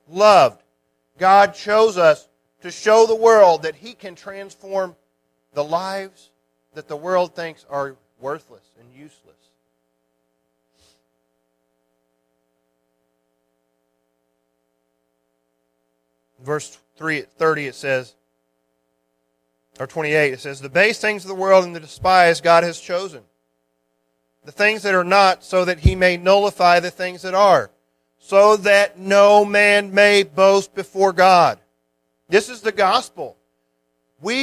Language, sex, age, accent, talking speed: English, male, 40-59, American, 125 wpm